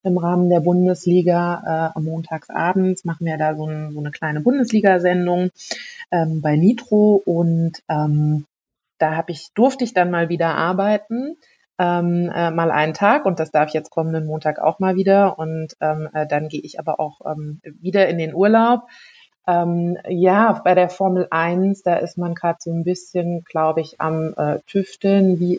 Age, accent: 30-49, German